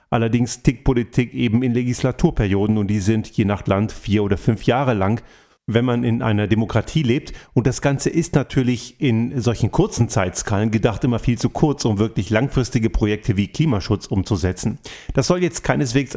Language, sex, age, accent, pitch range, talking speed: German, male, 40-59, German, 110-140 Hz, 180 wpm